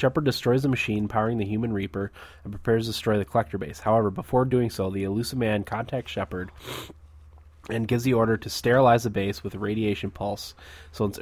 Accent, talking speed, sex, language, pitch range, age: American, 205 wpm, male, English, 95-115 Hz, 20-39